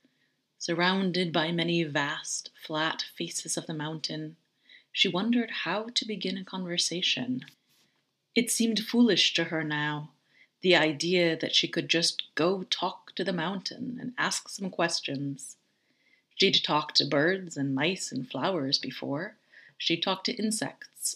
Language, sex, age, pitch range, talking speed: English, female, 30-49, 160-210 Hz, 140 wpm